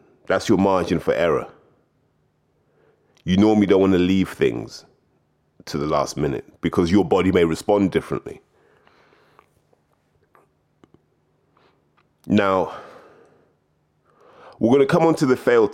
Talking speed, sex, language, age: 120 wpm, male, English, 30-49